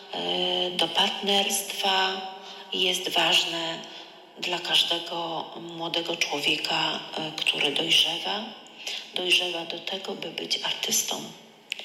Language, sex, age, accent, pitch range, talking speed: Polish, female, 40-59, native, 170-200 Hz, 80 wpm